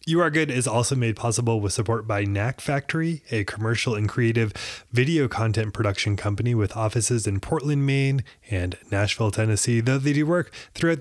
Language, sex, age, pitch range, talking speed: English, male, 20-39, 120-175 Hz, 180 wpm